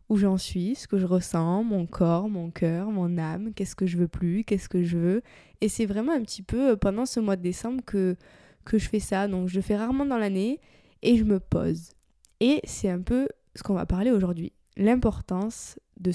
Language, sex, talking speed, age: French, female, 225 wpm, 20-39